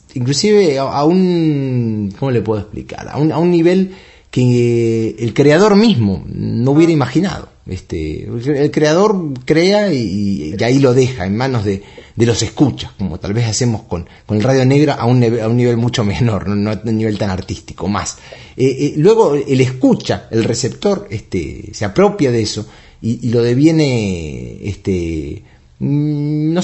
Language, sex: English, male